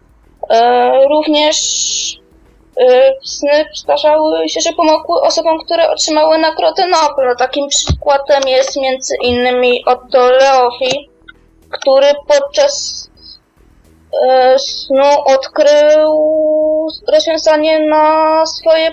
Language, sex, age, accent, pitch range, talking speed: Polish, female, 20-39, native, 260-300 Hz, 90 wpm